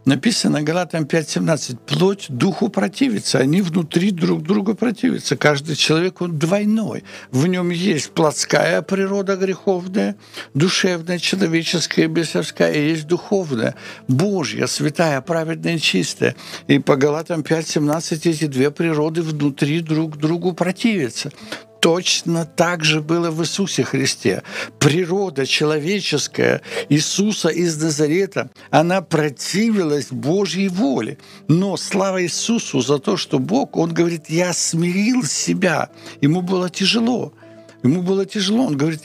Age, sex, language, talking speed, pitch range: 60-79, male, Ukrainian, 120 wpm, 145-180 Hz